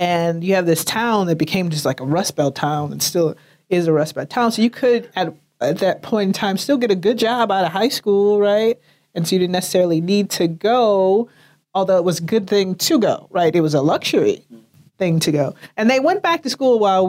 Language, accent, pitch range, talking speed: English, American, 160-205 Hz, 245 wpm